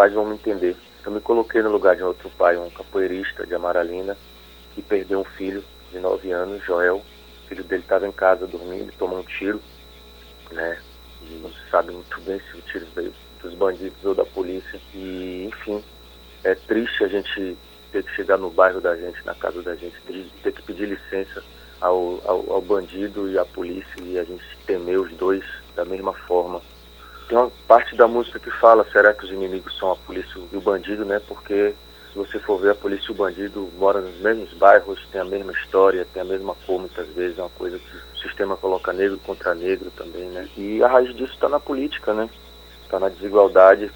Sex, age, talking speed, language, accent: male, 30-49, 205 wpm, Portuguese, Brazilian